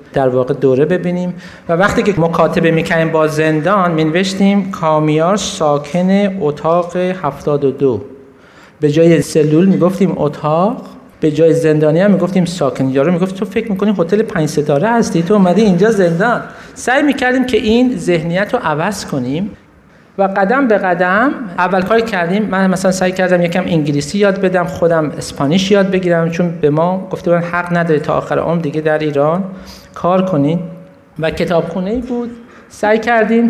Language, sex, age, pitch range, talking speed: Persian, male, 50-69, 155-200 Hz, 155 wpm